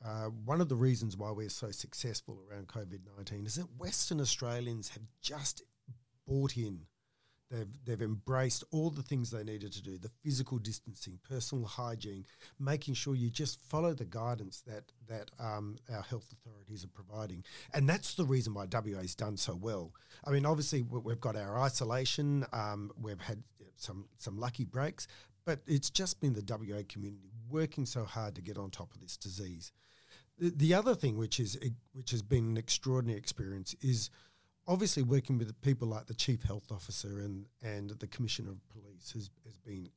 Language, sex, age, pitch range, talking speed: English, male, 50-69, 105-135 Hz, 180 wpm